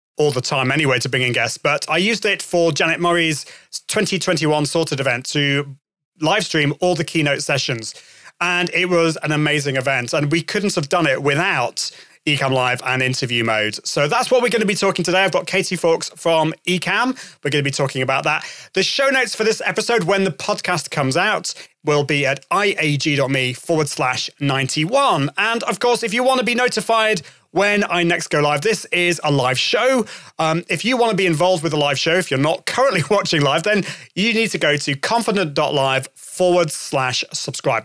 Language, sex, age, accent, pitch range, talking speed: English, male, 30-49, British, 145-200 Hz, 205 wpm